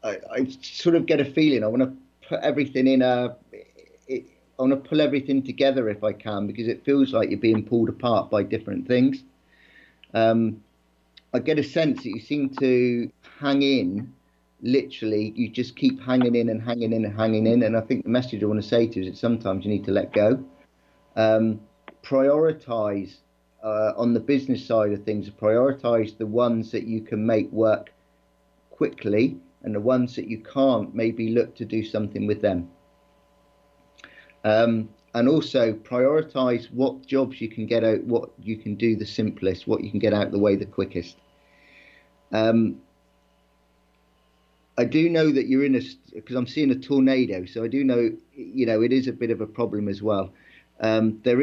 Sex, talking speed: male, 185 wpm